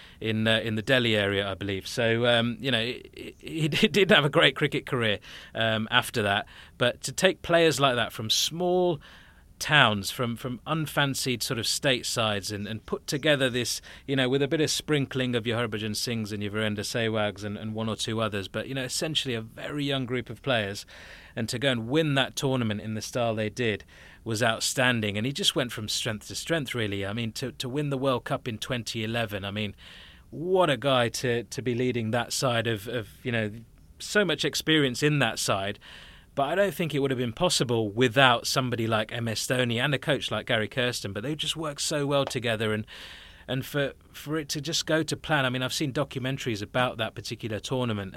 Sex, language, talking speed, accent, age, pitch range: male, English, 215 wpm, British, 30-49, 110-140 Hz